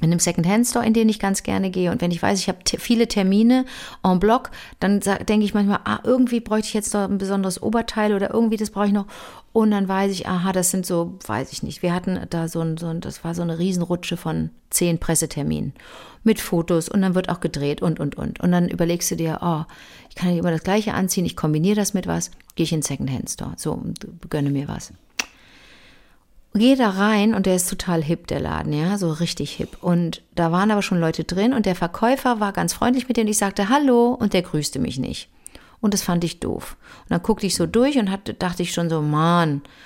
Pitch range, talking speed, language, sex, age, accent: 170-215 Hz, 240 wpm, German, female, 50-69, German